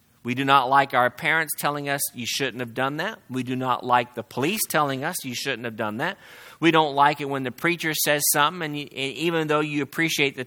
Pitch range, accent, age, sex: 135-160 Hz, American, 40-59, male